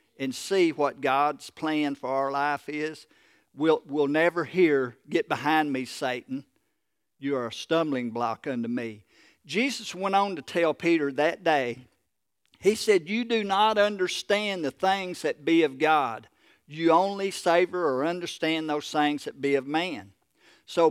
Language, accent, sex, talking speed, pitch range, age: English, American, male, 160 wpm, 135-195 Hz, 50-69